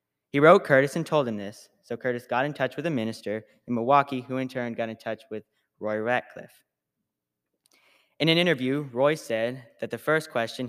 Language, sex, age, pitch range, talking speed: English, male, 20-39, 110-135 Hz, 195 wpm